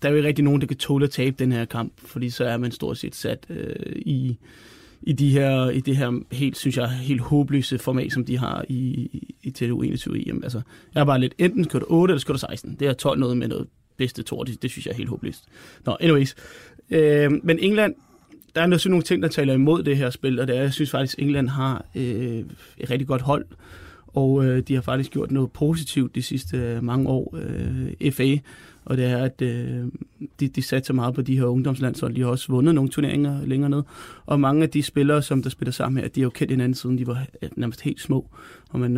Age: 30-49